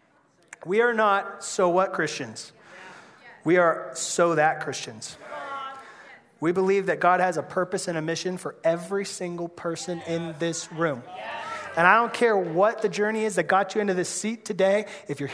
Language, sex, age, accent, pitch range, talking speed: English, male, 30-49, American, 185-255 Hz, 175 wpm